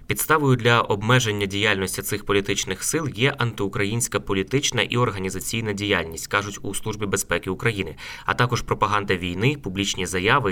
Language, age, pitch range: Ukrainian, 20-39, 95-120 Hz